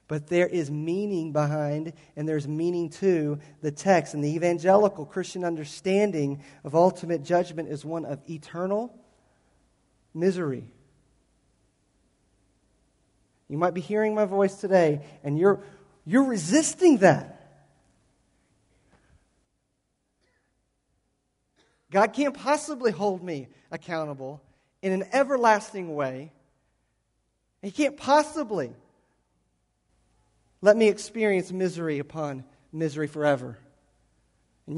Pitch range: 145-195 Hz